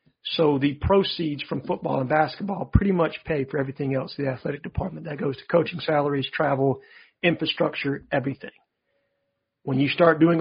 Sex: male